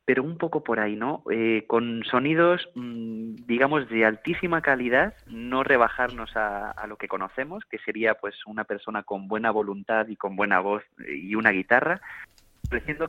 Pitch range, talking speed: 110-130 Hz, 165 wpm